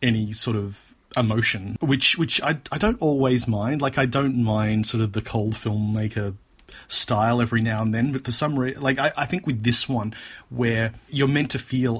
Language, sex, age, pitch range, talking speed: English, male, 30-49, 110-125 Hz, 205 wpm